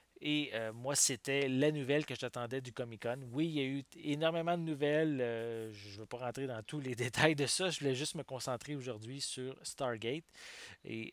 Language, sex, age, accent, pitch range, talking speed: English, male, 30-49, Canadian, 110-135 Hz, 210 wpm